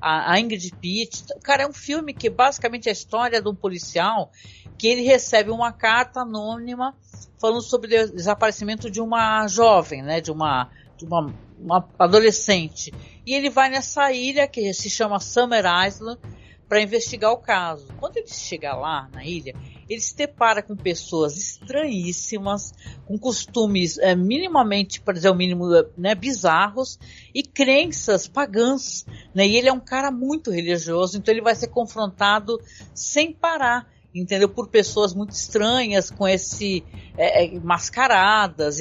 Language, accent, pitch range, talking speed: Portuguese, Brazilian, 180-245 Hz, 150 wpm